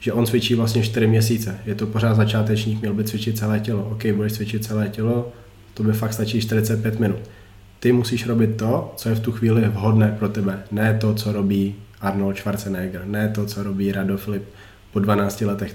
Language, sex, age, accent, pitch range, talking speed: Czech, male, 20-39, native, 105-110 Hz, 200 wpm